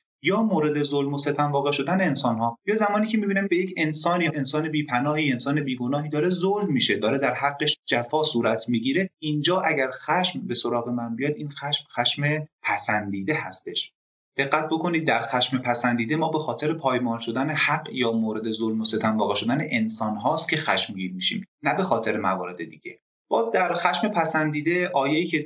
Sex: male